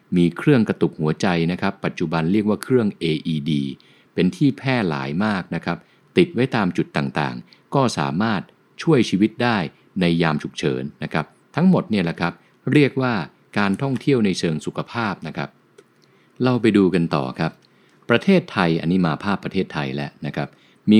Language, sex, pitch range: English, male, 75-110 Hz